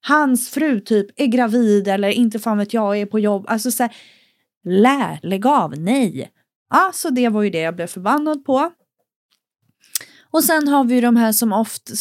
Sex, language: female, Swedish